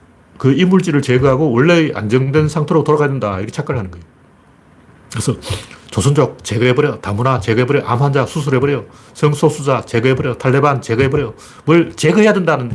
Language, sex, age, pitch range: Korean, male, 40-59, 105-165 Hz